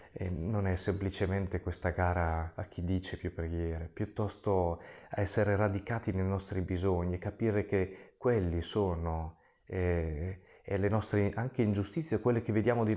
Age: 30-49